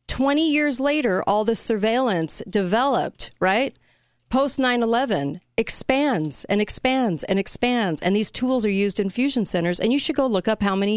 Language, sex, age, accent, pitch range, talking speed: English, female, 40-59, American, 175-230 Hz, 175 wpm